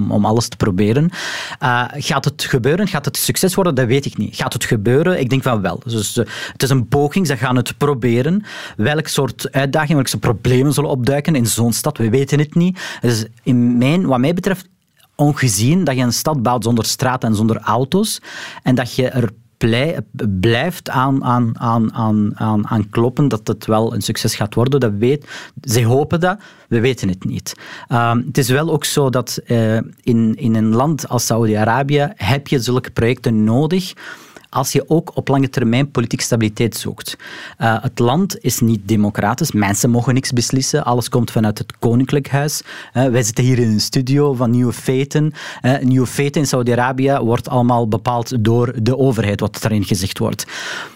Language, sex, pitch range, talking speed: Dutch, male, 115-140 Hz, 190 wpm